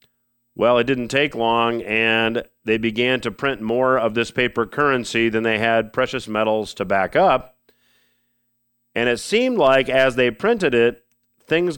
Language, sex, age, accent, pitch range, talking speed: English, male, 40-59, American, 115-140 Hz, 165 wpm